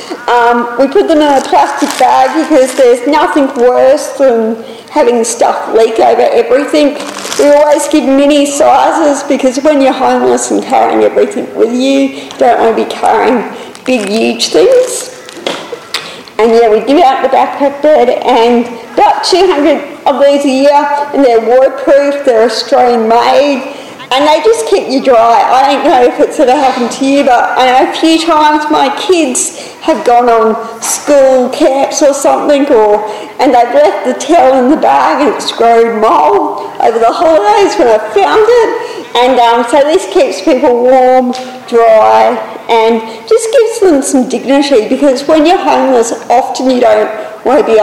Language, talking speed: English, 170 wpm